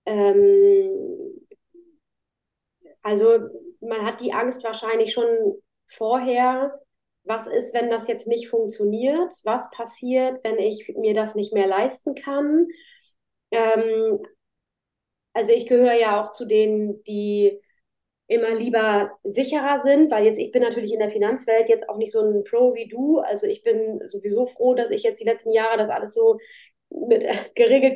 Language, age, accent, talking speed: German, 30-49, German, 150 wpm